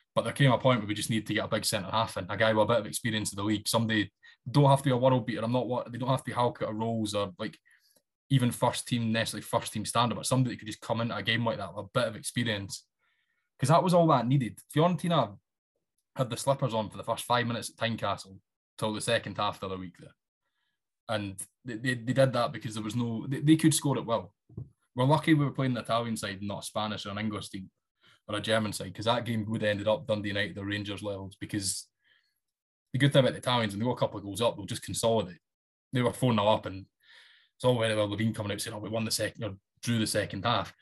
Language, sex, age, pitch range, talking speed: English, male, 20-39, 105-130 Hz, 270 wpm